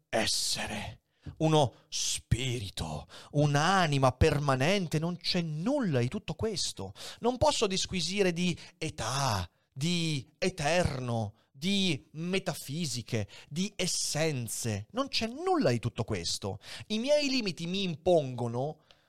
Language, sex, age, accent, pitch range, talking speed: Italian, male, 30-49, native, 120-190 Hz, 105 wpm